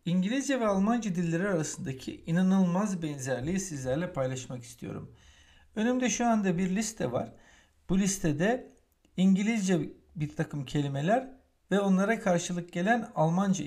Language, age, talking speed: Turkish, 60-79, 120 wpm